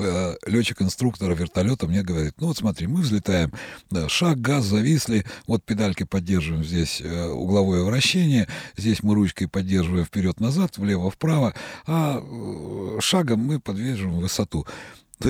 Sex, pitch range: male, 90-115 Hz